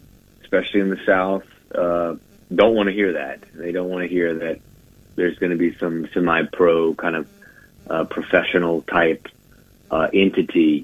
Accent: American